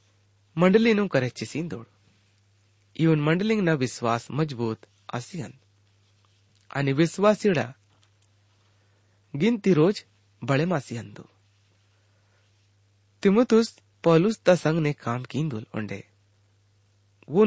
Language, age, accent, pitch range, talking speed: English, 30-49, Indian, 105-155 Hz, 95 wpm